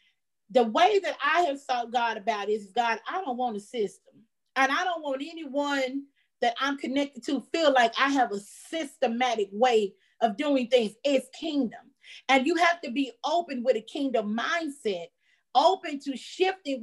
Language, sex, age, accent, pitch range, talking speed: English, female, 40-59, American, 250-300 Hz, 180 wpm